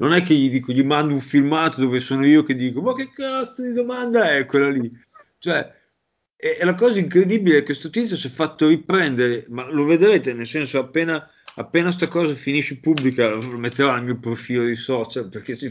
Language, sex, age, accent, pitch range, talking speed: Italian, male, 30-49, native, 120-145 Hz, 205 wpm